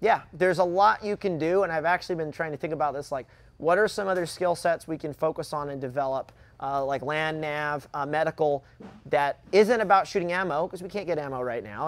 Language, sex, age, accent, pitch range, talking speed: English, male, 30-49, American, 135-170 Hz, 235 wpm